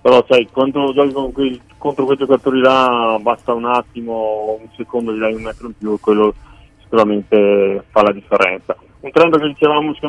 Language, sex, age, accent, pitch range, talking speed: Italian, male, 30-49, native, 105-120 Hz, 160 wpm